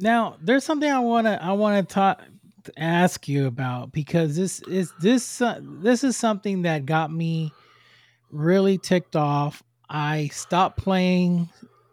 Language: English